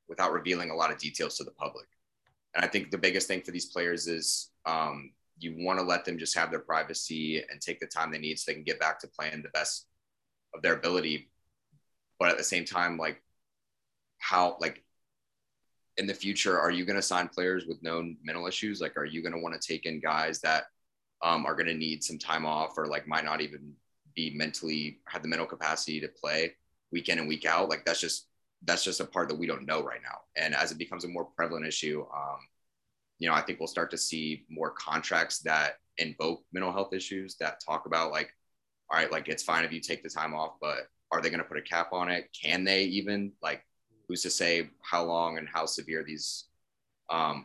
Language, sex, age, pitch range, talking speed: English, male, 20-39, 80-90 Hz, 230 wpm